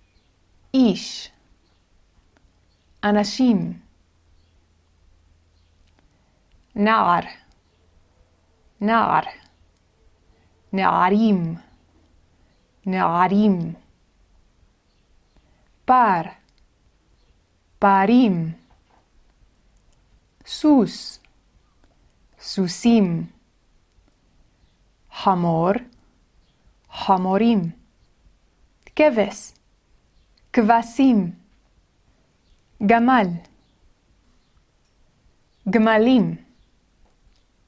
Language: Hebrew